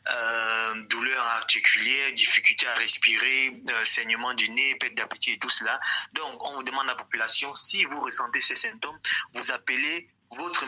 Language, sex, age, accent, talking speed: German, male, 30-49, French, 170 wpm